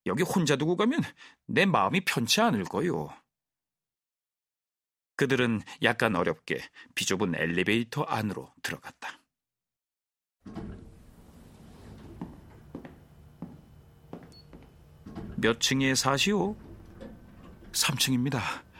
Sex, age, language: male, 40-59, Korean